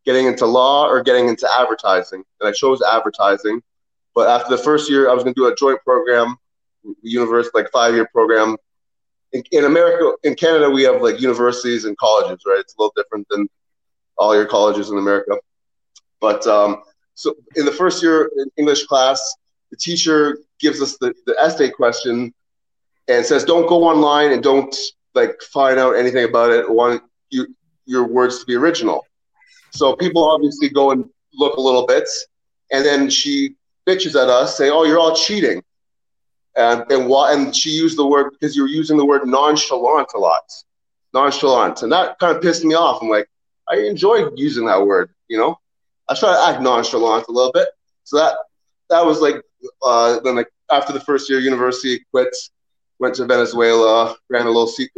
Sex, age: male, 30-49